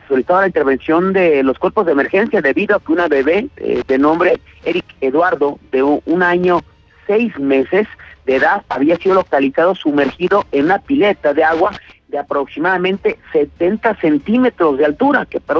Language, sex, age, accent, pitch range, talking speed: Spanish, male, 50-69, Mexican, 145-195 Hz, 160 wpm